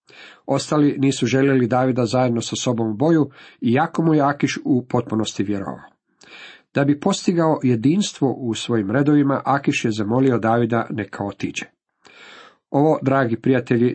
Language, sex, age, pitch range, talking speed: Croatian, male, 50-69, 115-145 Hz, 140 wpm